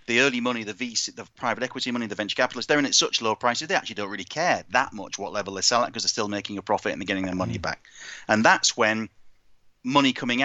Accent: British